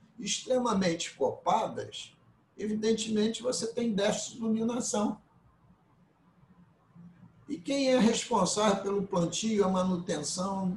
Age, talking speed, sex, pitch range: 60-79, 95 wpm, male, 170-230 Hz